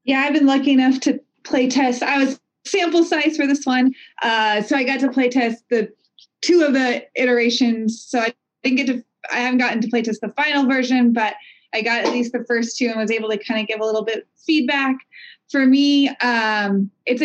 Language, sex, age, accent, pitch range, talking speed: English, female, 20-39, American, 230-285 Hz, 225 wpm